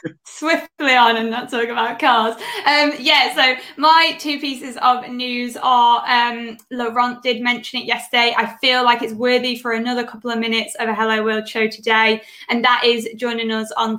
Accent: British